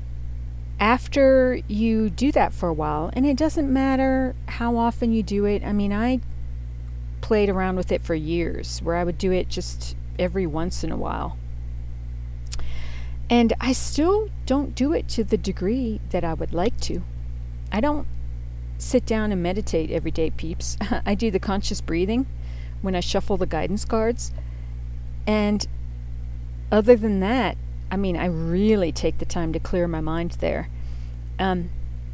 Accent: American